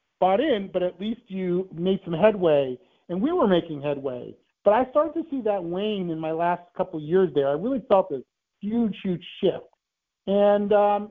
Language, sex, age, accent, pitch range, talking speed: English, male, 50-69, American, 165-200 Hz, 195 wpm